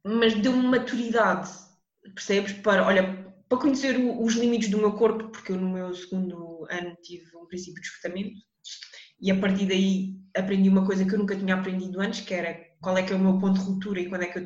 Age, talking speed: 20-39, 220 wpm